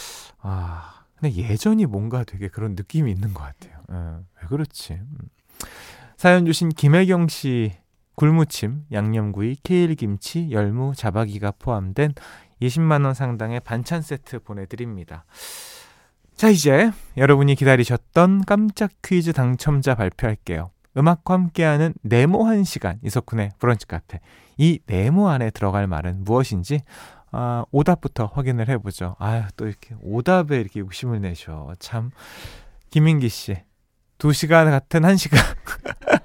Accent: native